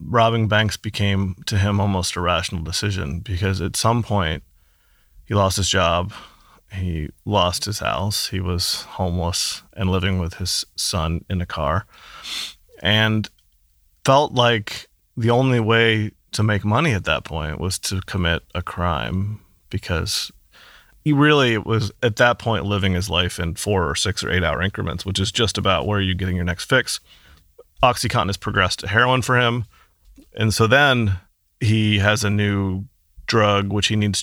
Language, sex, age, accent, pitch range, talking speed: English, male, 30-49, American, 90-110 Hz, 165 wpm